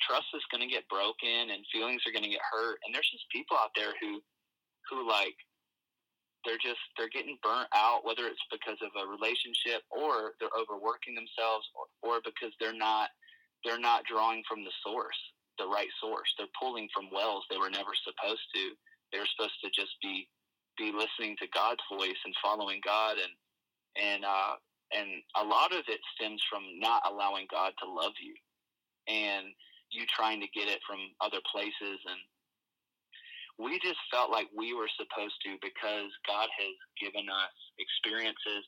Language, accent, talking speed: English, American, 180 wpm